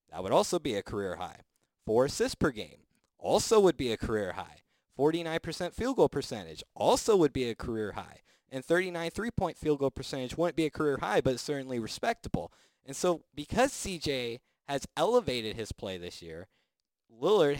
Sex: male